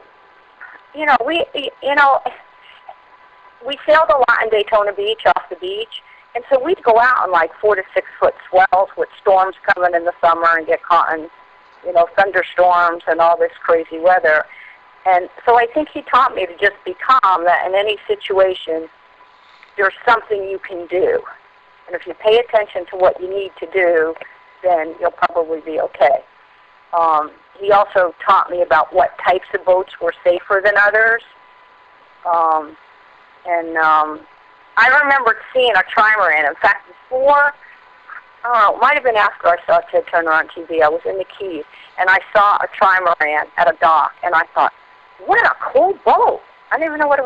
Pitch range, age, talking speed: 170-235 Hz, 50-69, 185 wpm